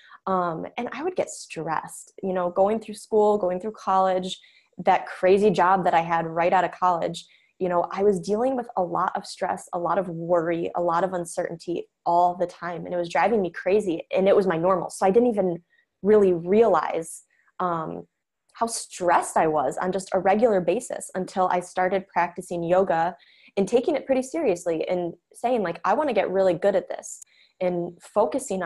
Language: English